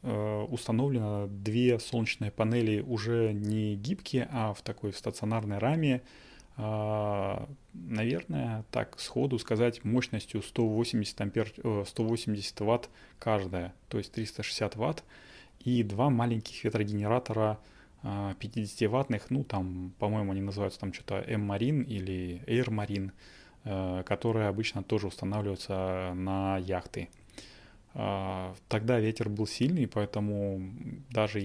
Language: Russian